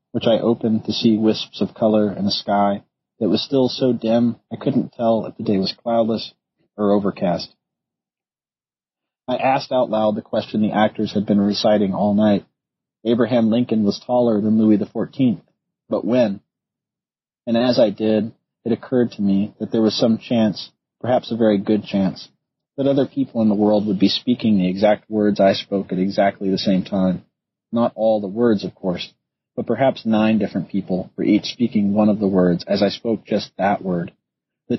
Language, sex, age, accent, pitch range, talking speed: English, male, 30-49, American, 100-115 Hz, 190 wpm